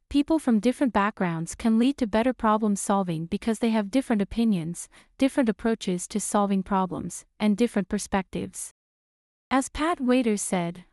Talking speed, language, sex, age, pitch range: 145 wpm, English, female, 30-49, 195-245 Hz